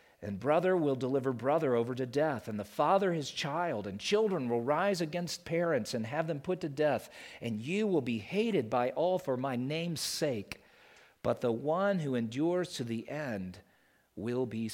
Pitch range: 145-195 Hz